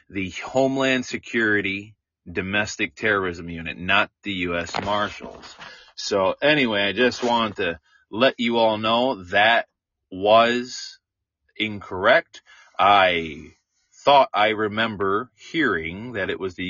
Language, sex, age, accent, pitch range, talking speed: English, male, 30-49, American, 90-115 Hz, 115 wpm